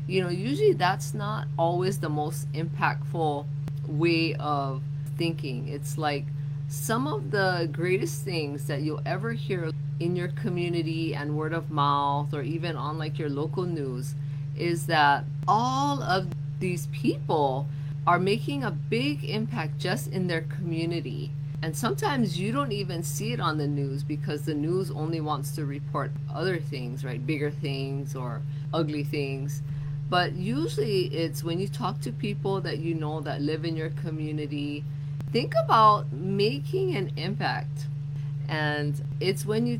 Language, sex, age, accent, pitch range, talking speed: English, female, 30-49, American, 145-160 Hz, 155 wpm